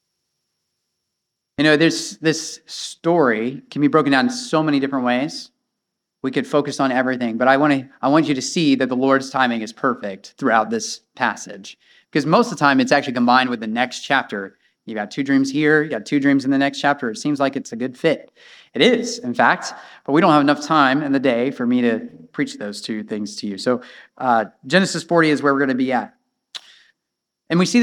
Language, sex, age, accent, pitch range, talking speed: English, male, 30-49, American, 135-185 Hz, 225 wpm